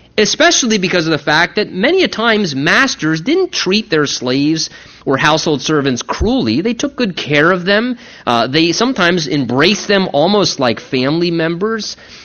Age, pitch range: 30-49, 155-215 Hz